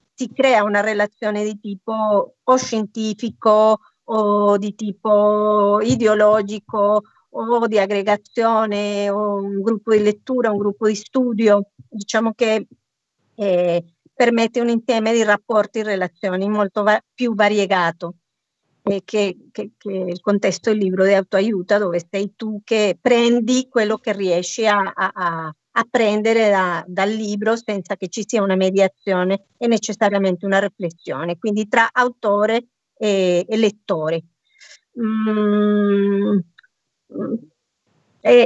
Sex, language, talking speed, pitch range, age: female, Italian, 130 wpm, 195-225 Hz, 50-69